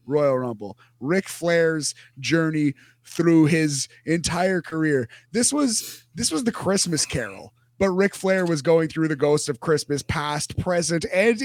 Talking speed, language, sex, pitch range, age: 150 wpm, English, male, 130-175 Hz, 30-49